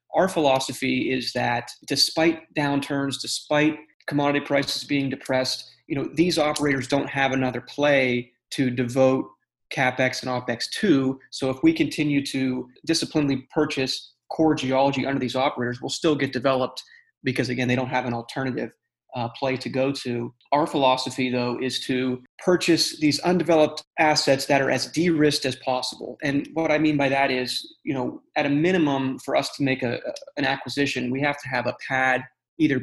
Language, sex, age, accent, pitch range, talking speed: English, male, 30-49, American, 130-150 Hz, 170 wpm